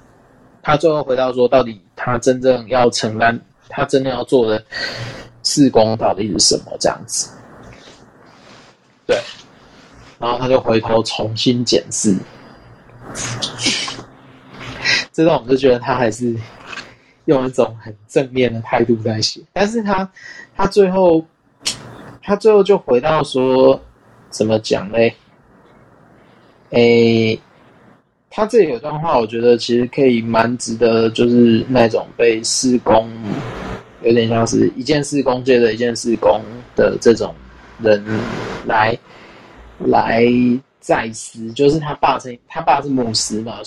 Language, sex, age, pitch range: Chinese, male, 20-39, 115-140 Hz